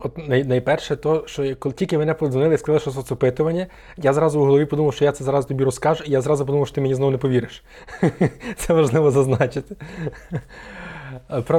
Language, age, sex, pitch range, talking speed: Ukrainian, 20-39, male, 125-150 Hz, 195 wpm